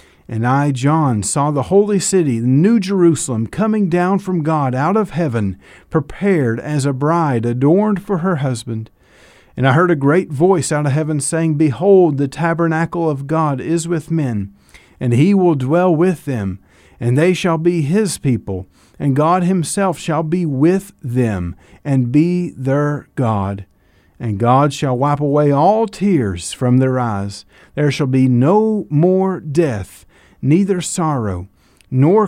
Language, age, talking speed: English, 50-69, 160 wpm